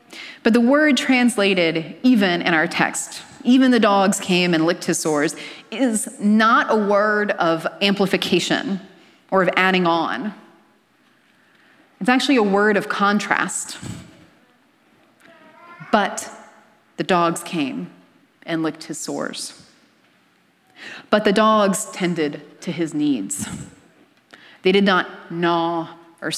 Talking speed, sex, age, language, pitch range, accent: 120 wpm, female, 30-49, English, 175-220 Hz, American